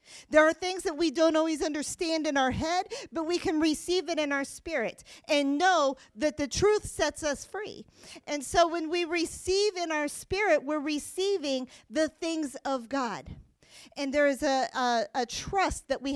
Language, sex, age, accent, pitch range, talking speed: English, female, 40-59, American, 260-330 Hz, 180 wpm